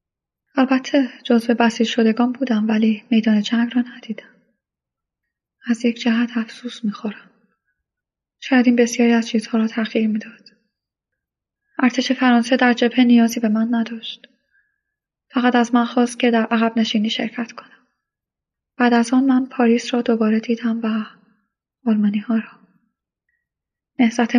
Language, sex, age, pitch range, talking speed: Persian, female, 10-29, 225-250 Hz, 135 wpm